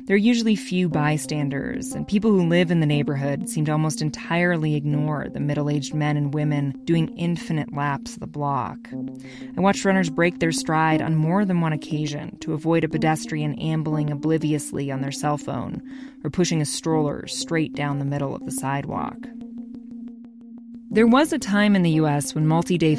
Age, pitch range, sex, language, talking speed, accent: 20-39, 145-195 Hz, female, English, 180 wpm, American